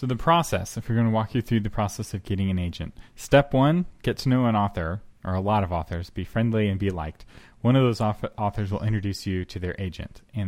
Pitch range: 95-115 Hz